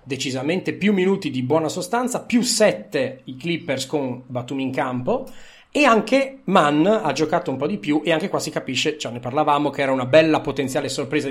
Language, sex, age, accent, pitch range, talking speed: Italian, male, 30-49, native, 130-175 Hz, 200 wpm